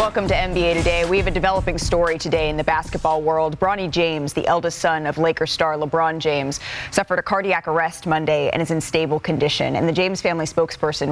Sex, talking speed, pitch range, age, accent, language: female, 210 wpm, 150-175 Hz, 20-39, American, English